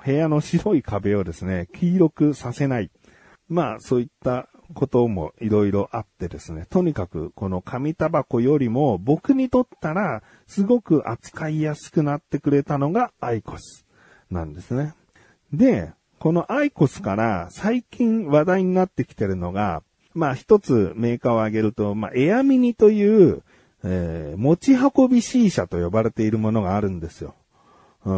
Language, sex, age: Japanese, male, 40-59